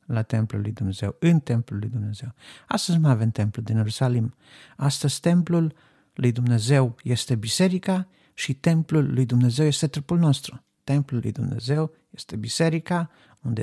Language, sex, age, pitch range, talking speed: Romanian, male, 50-69, 115-150 Hz, 145 wpm